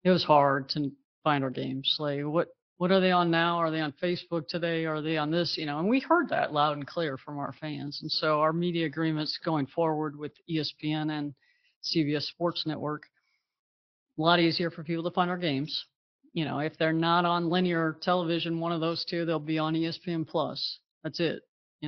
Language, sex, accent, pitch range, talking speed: English, female, American, 155-180 Hz, 210 wpm